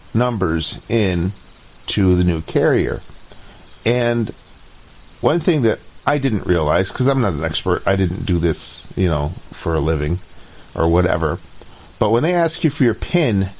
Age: 40-59